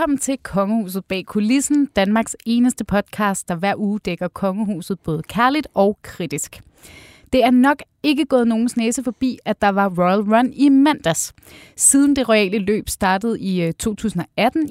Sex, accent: female, native